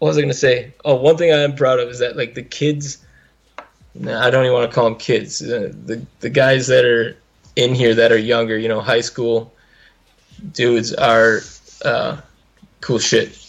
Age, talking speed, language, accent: 20-39, 190 wpm, English, American